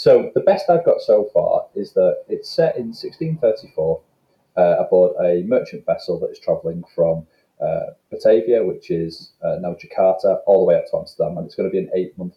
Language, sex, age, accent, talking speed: English, male, 30-49, British, 205 wpm